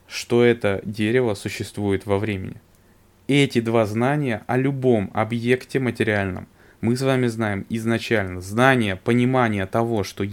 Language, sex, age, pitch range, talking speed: Russian, male, 20-39, 100-120 Hz, 130 wpm